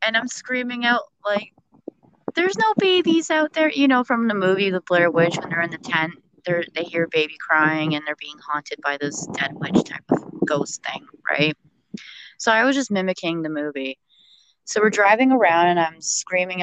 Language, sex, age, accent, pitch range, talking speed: English, female, 20-39, American, 160-200 Hz, 200 wpm